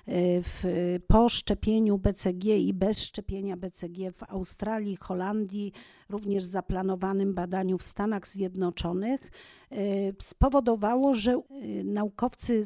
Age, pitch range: 50-69, 205-245 Hz